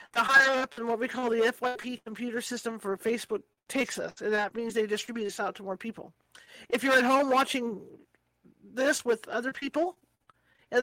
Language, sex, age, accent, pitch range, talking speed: English, male, 50-69, American, 220-265 Hz, 195 wpm